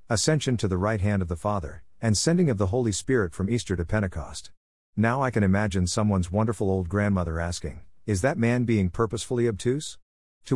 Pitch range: 90-115 Hz